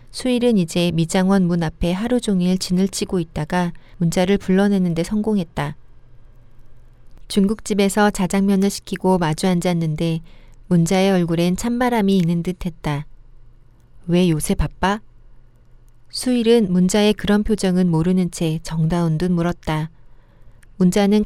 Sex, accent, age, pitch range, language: female, native, 40-59, 145-195 Hz, Korean